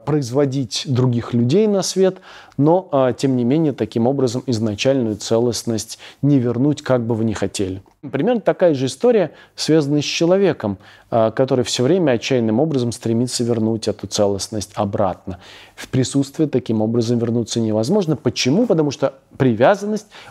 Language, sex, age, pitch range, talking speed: Russian, male, 30-49, 120-155 Hz, 140 wpm